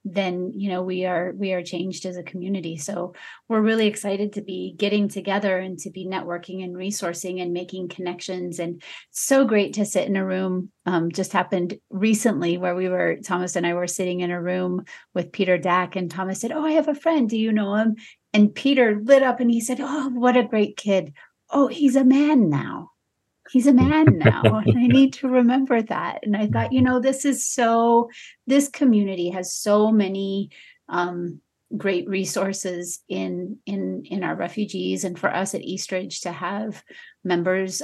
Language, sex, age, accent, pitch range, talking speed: English, female, 30-49, American, 175-215 Hz, 190 wpm